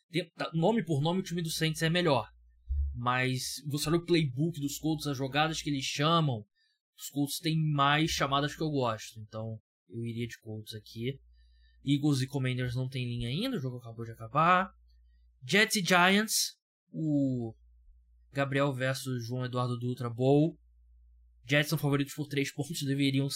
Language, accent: Portuguese, Brazilian